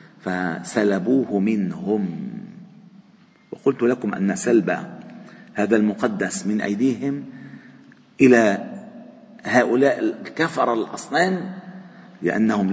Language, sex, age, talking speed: Arabic, male, 40-59, 70 wpm